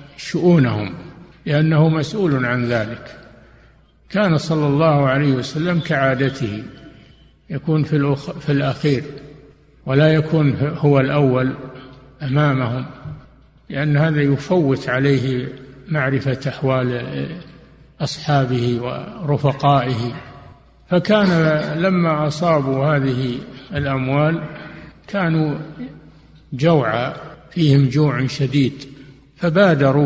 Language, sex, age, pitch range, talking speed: Arabic, male, 60-79, 130-150 Hz, 75 wpm